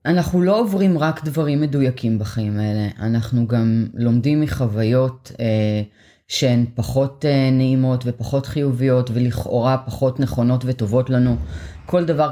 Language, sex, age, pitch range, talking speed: Hebrew, female, 20-39, 120-155 Hz, 125 wpm